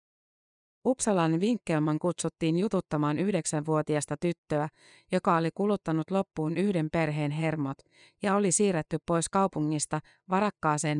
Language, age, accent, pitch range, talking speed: Finnish, 30-49, native, 155-190 Hz, 105 wpm